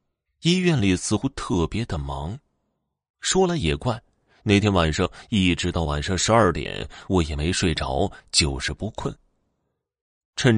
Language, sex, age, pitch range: Chinese, male, 30-49, 80-105 Hz